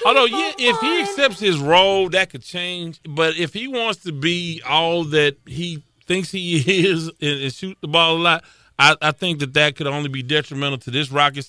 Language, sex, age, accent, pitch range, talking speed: English, male, 30-49, American, 130-170 Hz, 215 wpm